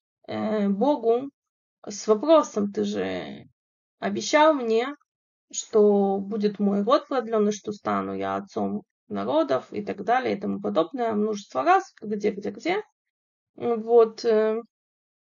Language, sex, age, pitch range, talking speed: Russian, female, 20-39, 215-295 Hz, 115 wpm